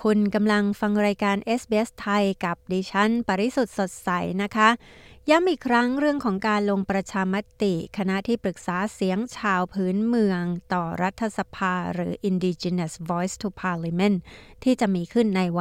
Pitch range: 180-215 Hz